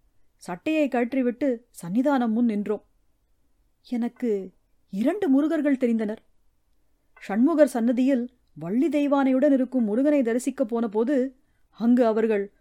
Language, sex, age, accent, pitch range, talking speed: Tamil, female, 30-49, native, 220-275 Hz, 95 wpm